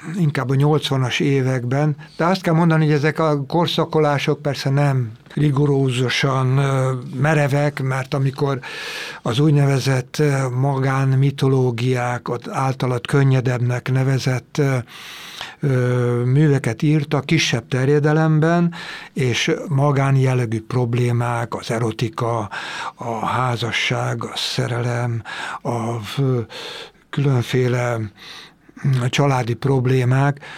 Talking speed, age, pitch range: 85 wpm, 60-79, 130-150 Hz